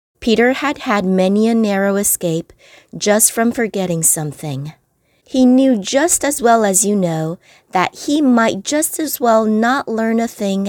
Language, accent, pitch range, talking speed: English, American, 180-230 Hz, 165 wpm